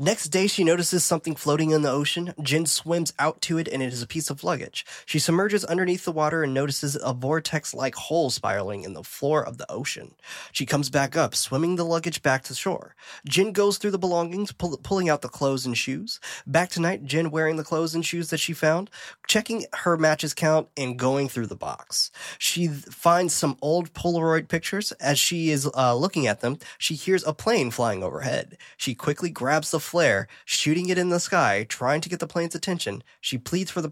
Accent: American